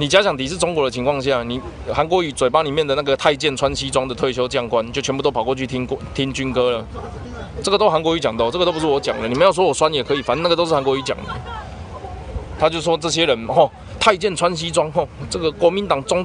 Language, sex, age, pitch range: Chinese, male, 20-39, 130-200 Hz